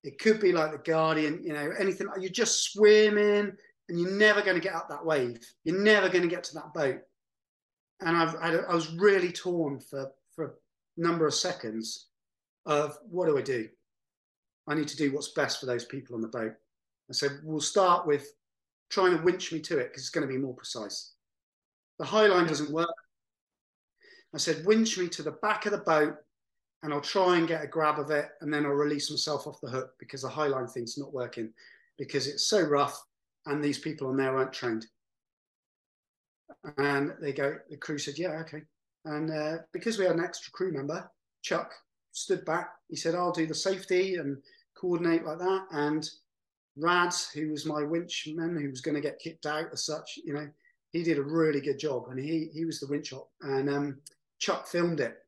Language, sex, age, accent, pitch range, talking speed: English, male, 30-49, British, 145-175 Hz, 205 wpm